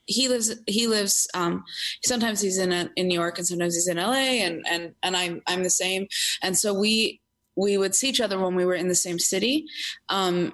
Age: 20-39